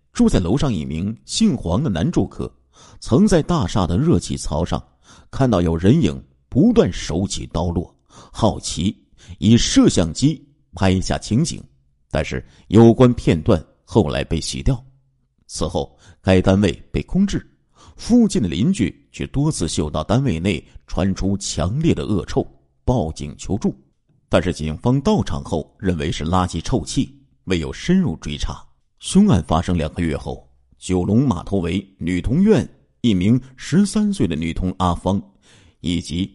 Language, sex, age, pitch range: Chinese, male, 50-69, 80-125 Hz